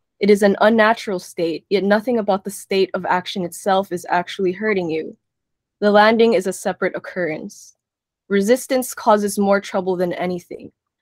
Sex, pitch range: female, 185-220 Hz